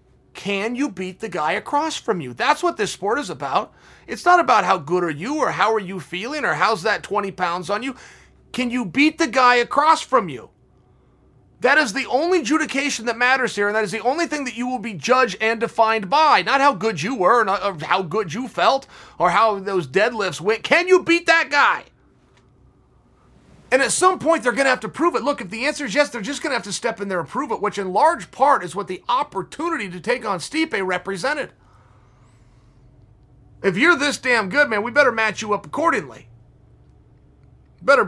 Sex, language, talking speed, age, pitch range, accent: male, English, 215 wpm, 30-49, 190-270 Hz, American